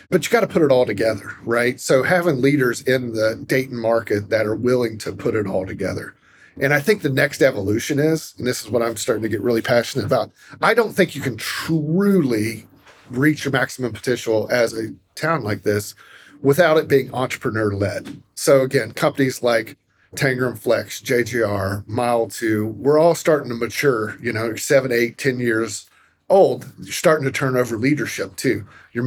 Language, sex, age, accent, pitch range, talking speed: English, male, 40-59, American, 110-135 Hz, 185 wpm